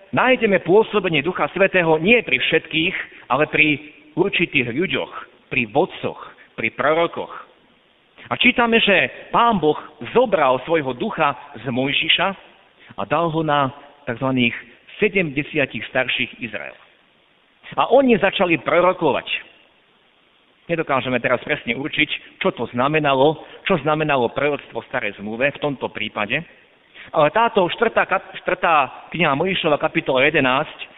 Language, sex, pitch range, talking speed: Slovak, male, 135-190 Hz, 120 wpm